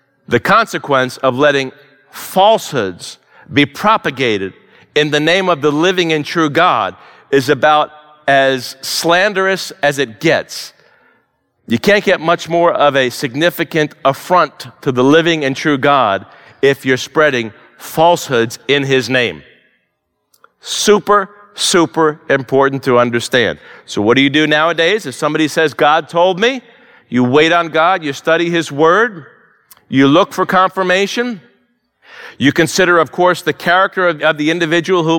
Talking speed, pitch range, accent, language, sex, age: 145 wpm, 145-180 Hz, American, English, male, 50-69